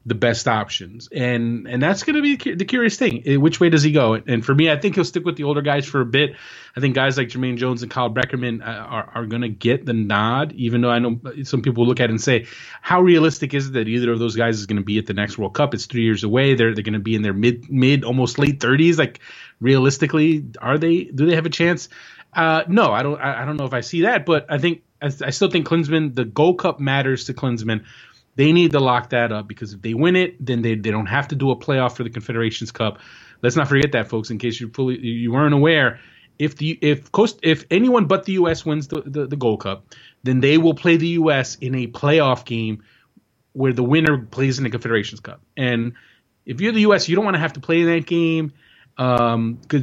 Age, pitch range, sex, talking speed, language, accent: 30-49, 120-160 Hz, male, 250 wpm, English, American